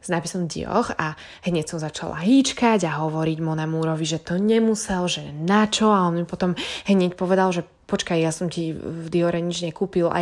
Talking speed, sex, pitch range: 190 wpm, female, 170-230 Hz